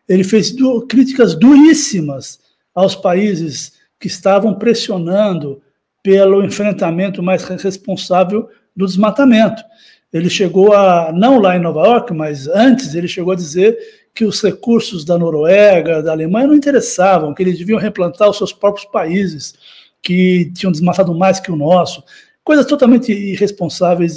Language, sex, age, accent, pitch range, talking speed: Portuguese, male, 60-79, Brazilian, 175-240 Hz, 140 wpm